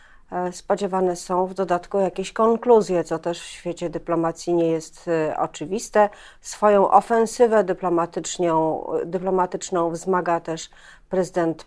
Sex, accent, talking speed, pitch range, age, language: female, native, 110 wpm, 165-195 Hz, 40-59, Polish